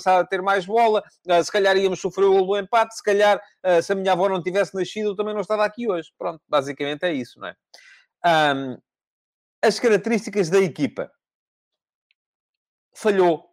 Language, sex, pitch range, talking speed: English, male, 135-200 Hz, 175 wpm